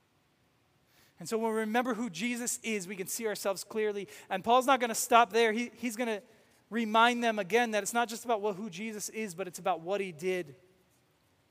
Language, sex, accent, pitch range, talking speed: English, male, American, 190-230 Hz, 220 wpm